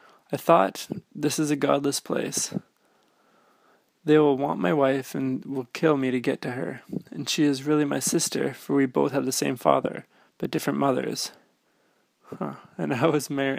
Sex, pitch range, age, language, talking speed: male, 130-150 Hz, 20-39, English, 180 wpm